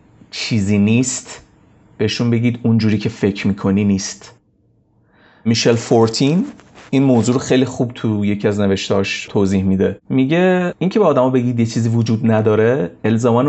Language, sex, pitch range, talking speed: Persian, male, 100-125 Hz, 145 wpm